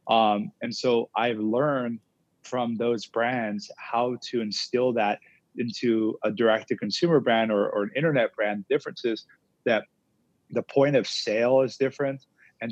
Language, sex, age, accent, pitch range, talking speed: English, male, 30-49, American, 105-120 Hz, 140 wpm